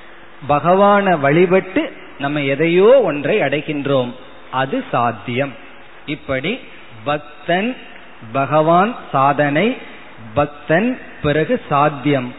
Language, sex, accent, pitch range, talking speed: Tamil, male, native, 140-180 Hz, 60 wpm